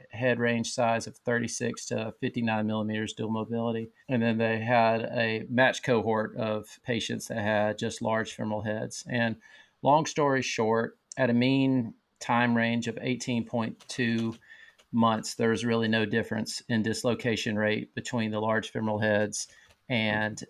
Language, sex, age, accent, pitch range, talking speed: English, male, 40-59, American, 110-120 Hz, 150 wpm